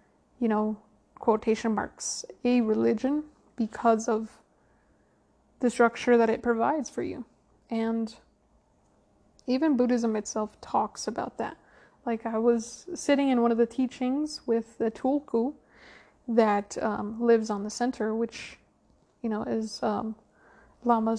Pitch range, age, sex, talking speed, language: 220-245 Hz, 20-39, female, 130 wpm, English